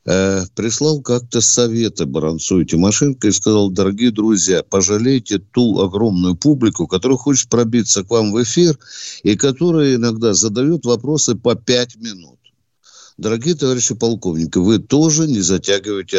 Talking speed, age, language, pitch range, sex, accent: 130 wpm, 50-69, Russian, 95-140 Hz, male, native